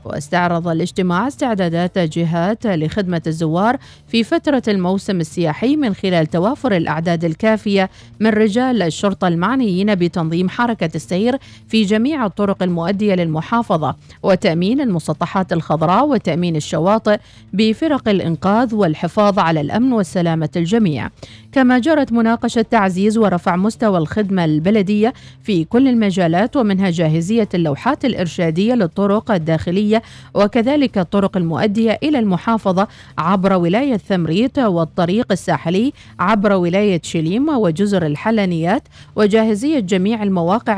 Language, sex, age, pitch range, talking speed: Arabic, female, 40-59, 175-230 Hz, 110 wpm